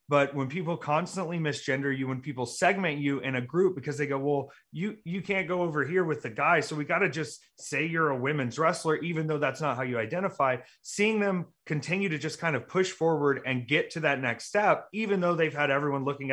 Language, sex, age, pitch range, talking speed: English, male, 30-49, 135-170 Hz, 235 wpm